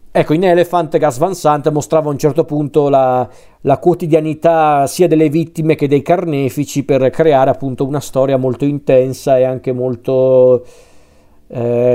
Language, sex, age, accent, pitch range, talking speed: Italian, male, 40-59, native, 125-160 Hz, 155 wpm